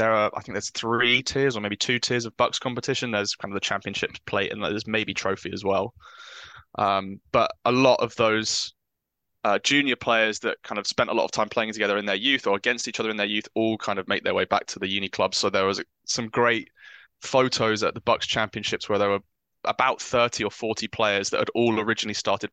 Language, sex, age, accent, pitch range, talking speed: English, male, 20-39, British, 100-120 Hz, 235 wpm